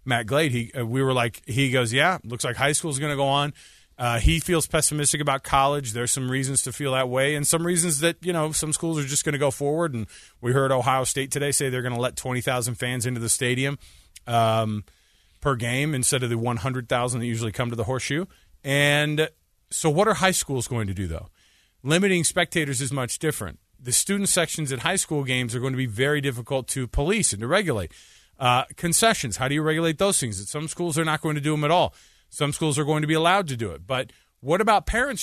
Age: 30-49